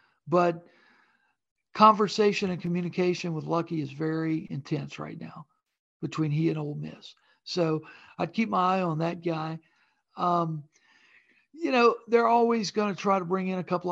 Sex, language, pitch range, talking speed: male, English, 165-200 Hz, 160 wpm